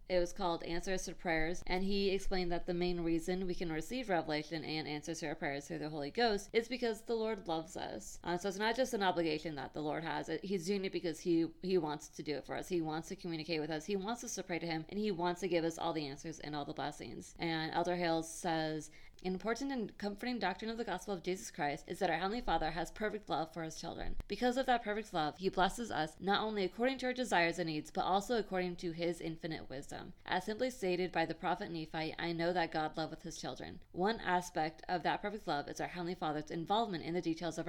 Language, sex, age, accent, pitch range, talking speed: English, female, 20-39, American, 160-195 Hz, 255 wpm